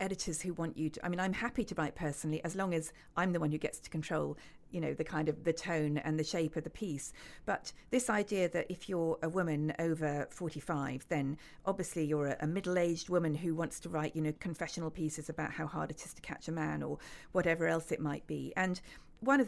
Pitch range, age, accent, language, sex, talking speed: 150-180 Hz, 40-59, British, English, female, 235 wpm